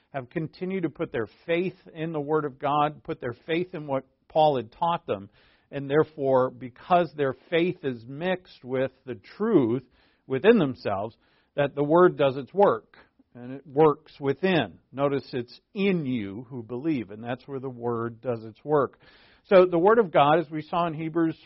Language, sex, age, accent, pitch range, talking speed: English, male, 50-69, American, 135-175 Hz, 185 wpm